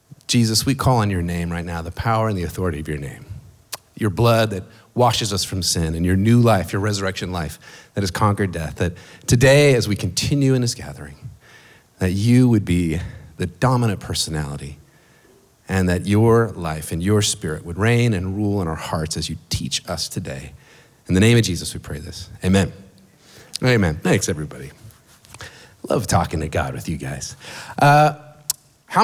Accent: American